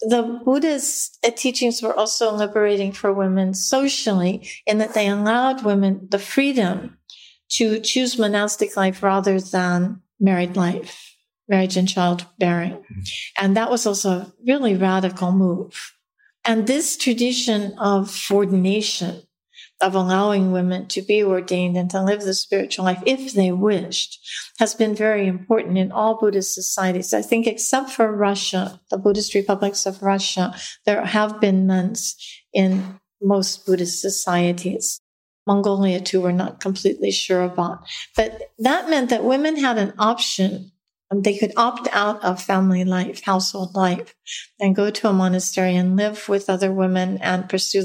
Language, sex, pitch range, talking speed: English, female, 185-225 Hz, 145 wpm